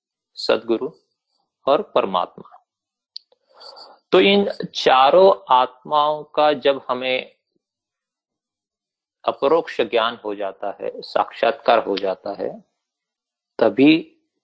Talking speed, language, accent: 85 wpm, Hindi, native